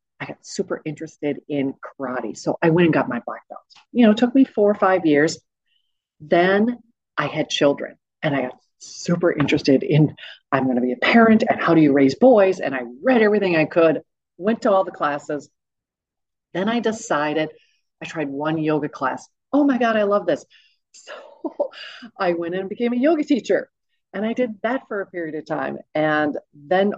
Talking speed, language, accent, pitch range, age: 200 wpm, English, American, 150-220 Hz, 40-59